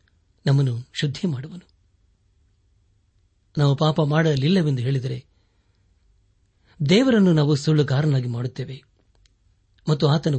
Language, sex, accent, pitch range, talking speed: Kannada, male, native, 95-155 Hz, 80 wpm